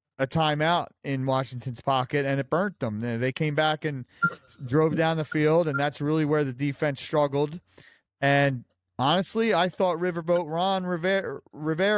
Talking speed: 155 wpm